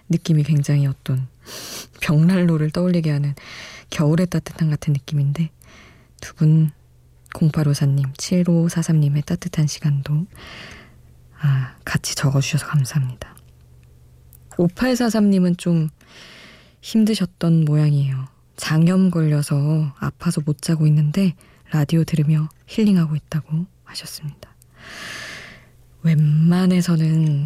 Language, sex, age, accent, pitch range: Korean, female, 20-39, native, 140-170 Hz